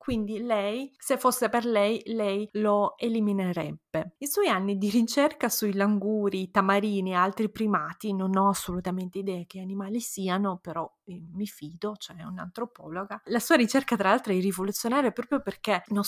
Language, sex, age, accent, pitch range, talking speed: Italian, female, 20-39, native, 185-240 Hz, 165 wpm